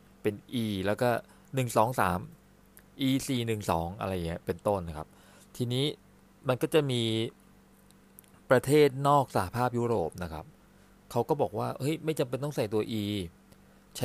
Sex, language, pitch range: male, Thai, 95-125 Hz